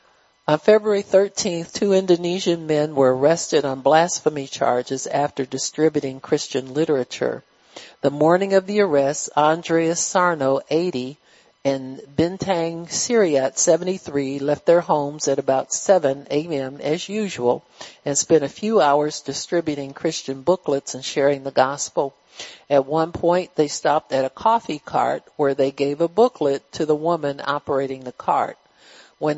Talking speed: 140 wpm